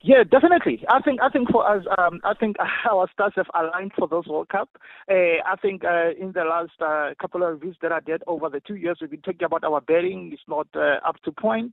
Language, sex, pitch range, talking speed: English, male, 165-200 Hz, 250 wpm